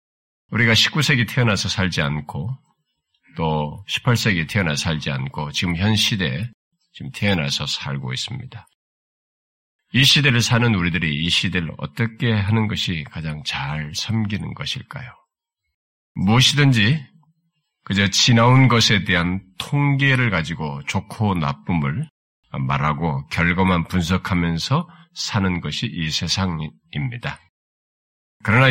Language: Korean